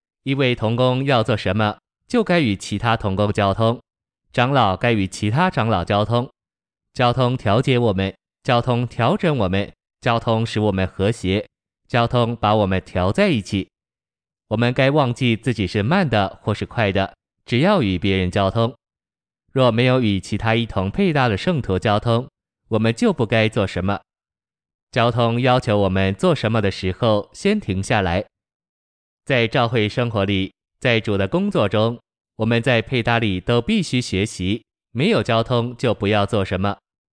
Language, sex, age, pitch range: Chinese, male, 20-39, 100-120 Hz